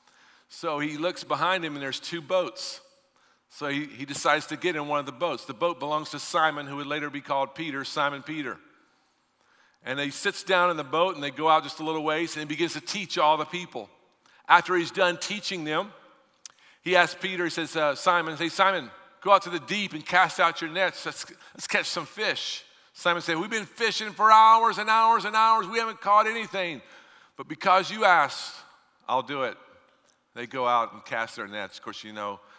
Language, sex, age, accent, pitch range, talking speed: English, male, 50-69, American, 135-185 Hz, 220 wpm